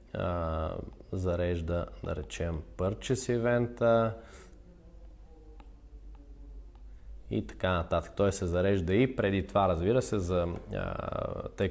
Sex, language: male, Bulgarian